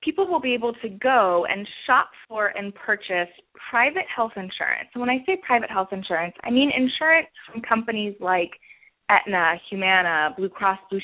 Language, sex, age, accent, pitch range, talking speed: English, female, 20-39, American, 190-260 Hz, 175 wpm